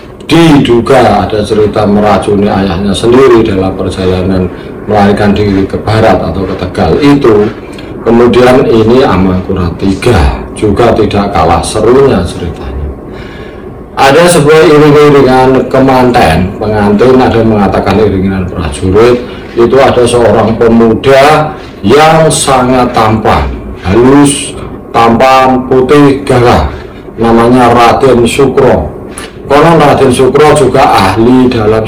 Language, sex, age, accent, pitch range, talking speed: Indonesian, male, 40-59, native, 95-130 Hz, 105 wpm